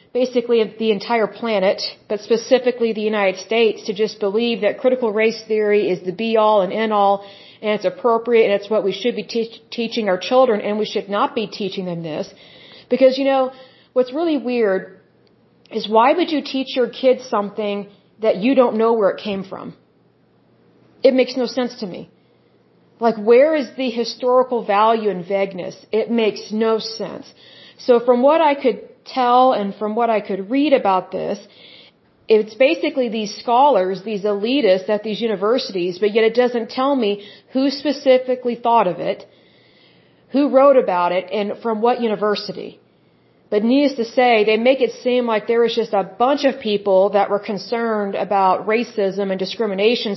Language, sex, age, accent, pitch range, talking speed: English, female, 40-59, American, 205-250 Hz, 175 wpm